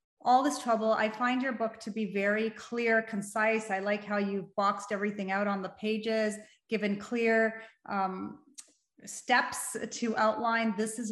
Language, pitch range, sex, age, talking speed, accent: English, 195-235 Hz, female, 30-49, 165 wpm, American